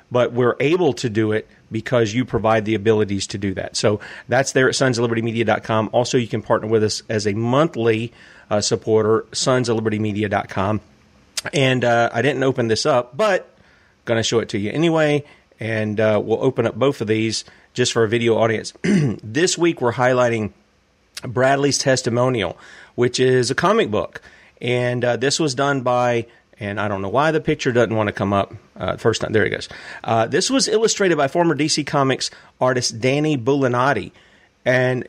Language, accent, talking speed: English, American, 190 wpm